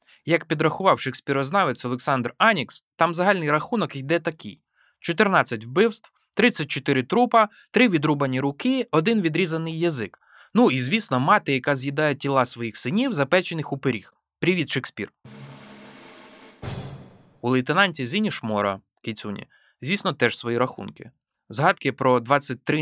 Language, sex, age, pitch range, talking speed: Ukrainian, male, 20-39, 120-160 Hz, 120 wpm